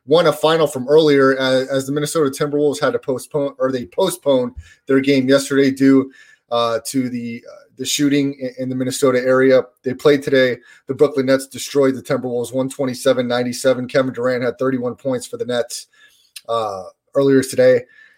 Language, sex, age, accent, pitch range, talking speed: English, male, 30-49, American, 130-150 Hz, 165 wpm